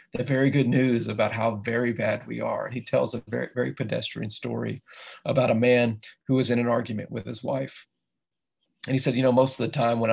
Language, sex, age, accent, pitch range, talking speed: English, male, 40-59, American, 115-130 Hz, 225 wpm